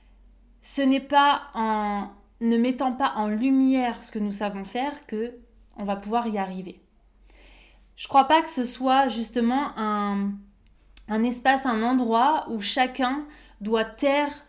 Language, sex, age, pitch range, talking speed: French, female, 20-39, 215-275 Hz, 150 wpm